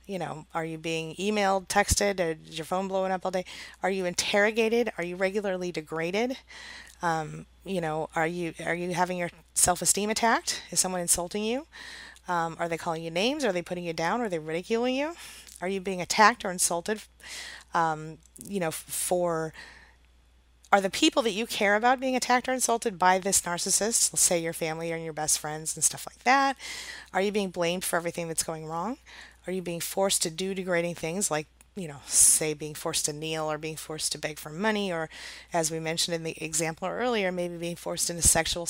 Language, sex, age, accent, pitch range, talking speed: English, female, 30-49, American, 160-205 Hz, 210 wpm